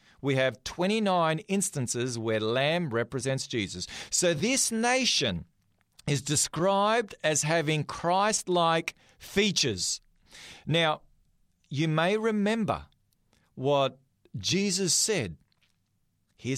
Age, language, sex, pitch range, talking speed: 40-59, English, male, 120-180 Hz, 95 wpm